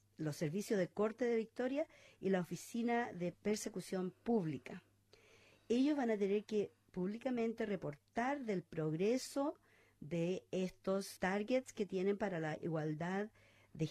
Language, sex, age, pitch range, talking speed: English, female, 50-69, 160-220 Hz, 130 wpm